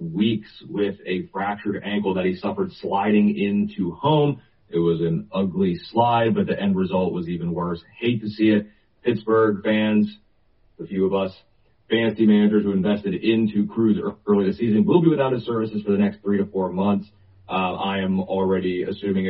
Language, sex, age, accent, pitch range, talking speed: English, male, 30-49, American, 95-115 Hz, 185 wpm